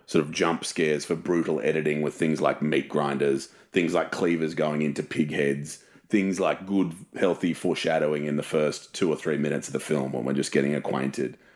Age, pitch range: 30-49, 70-85 Hz